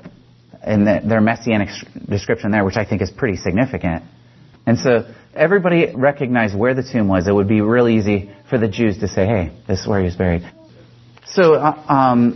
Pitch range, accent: 105-130 Hz, American